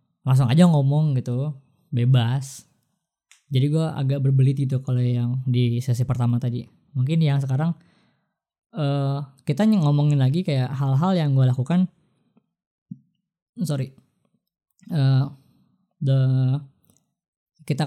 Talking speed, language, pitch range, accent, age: 105 wpm, Indonesian, 130-155 Hz, native, 20-39